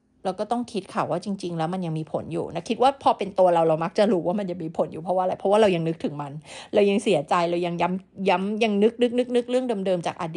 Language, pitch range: Thai, 165-220 Hz